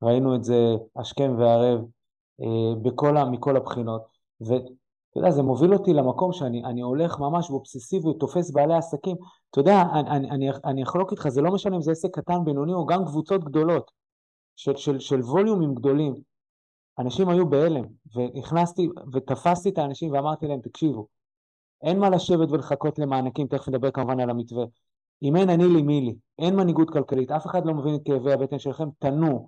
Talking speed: 165 wpm